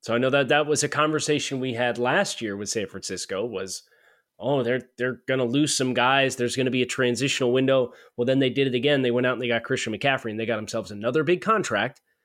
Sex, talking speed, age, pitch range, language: male, 255 wpm, 30-49, 120-150 Hz, English